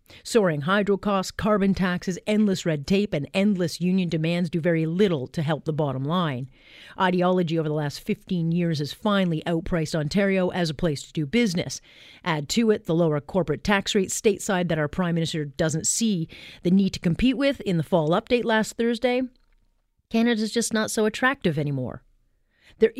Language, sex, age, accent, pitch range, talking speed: English, female, 40-59, American, 160-200 Hz, 180 wpm